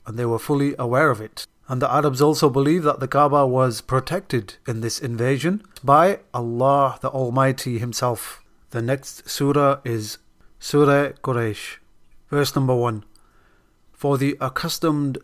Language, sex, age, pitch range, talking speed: English, male, 30-49, 120-145 Hz, 145 wpm